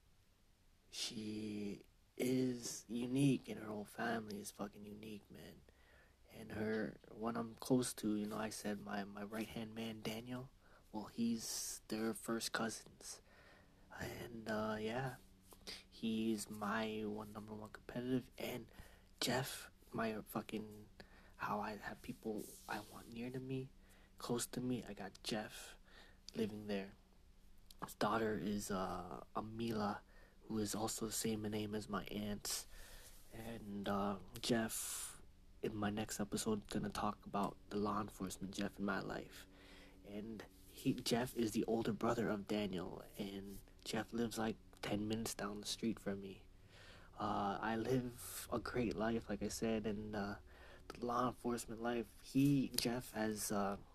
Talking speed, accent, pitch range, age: 145 wpm, American, 95-115 Hz, 20-39